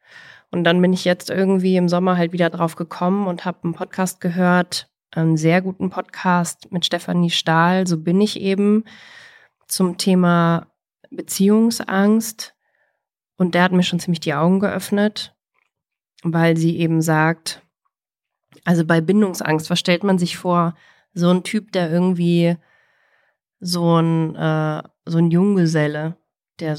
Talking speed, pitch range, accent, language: 145 wpm, 165-190 Hz, German, German